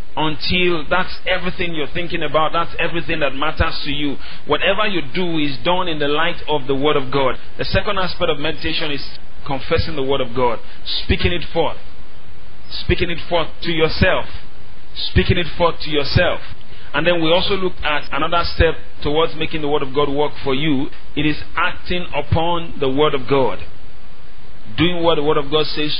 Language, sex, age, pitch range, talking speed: English, male, 40-59, 130-160 Hz, 185 wpm